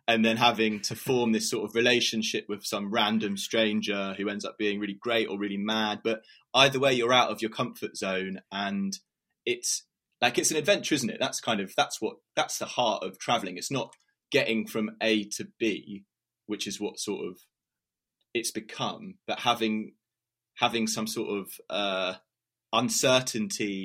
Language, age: English, 20-39